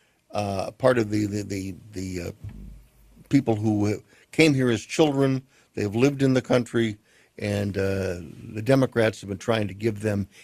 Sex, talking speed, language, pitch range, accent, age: male, 165 wpm, English, 110-140 Hz, American, 60-79